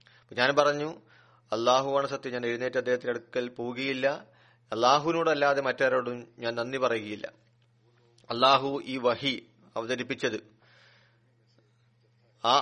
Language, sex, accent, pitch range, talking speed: Malayalam, male, native, 120-135 Hz, 95 wpm